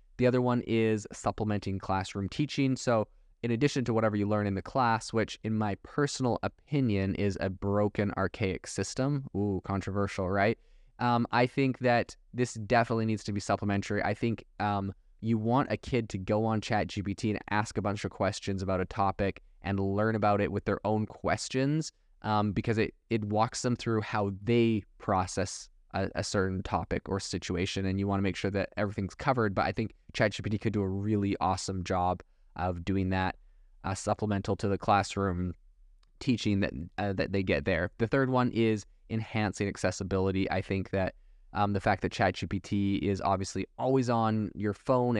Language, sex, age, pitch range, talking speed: English, male, 20-39, 95-115 Hz, 180 wpm